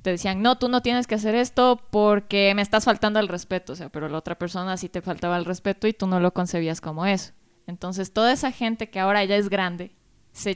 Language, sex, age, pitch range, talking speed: Spanish, female, 20-39, 185-225 Hz, 245 wpm